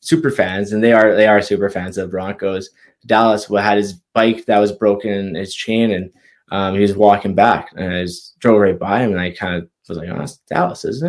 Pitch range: 95-110 Hz